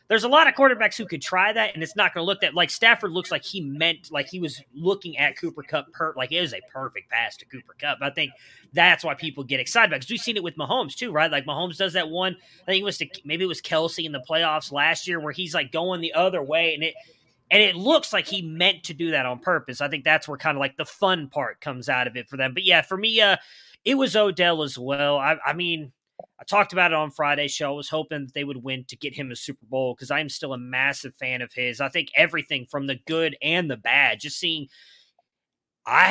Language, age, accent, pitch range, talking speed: English, 30-49, American, 145-185 Hz, 270 wpm